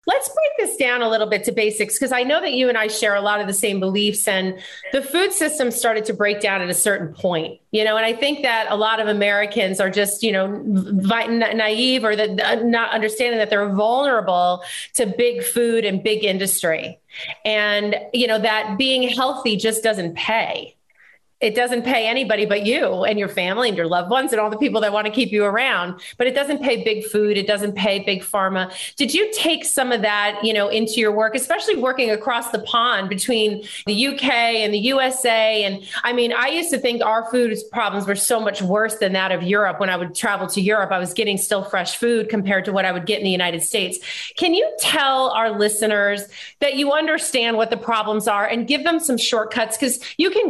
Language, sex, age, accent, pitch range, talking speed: English, female, 30-49, American, 205-245 Hz, 220 wpm